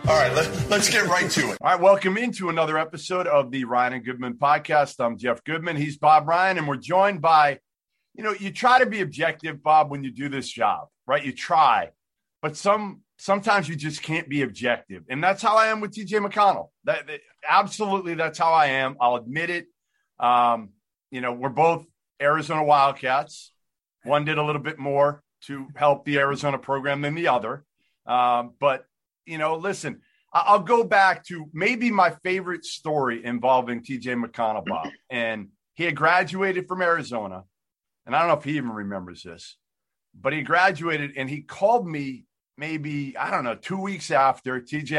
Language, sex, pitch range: English, male, 135-185 Hz